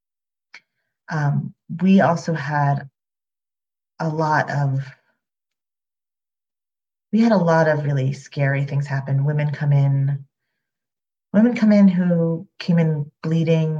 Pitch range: 140-170 Hz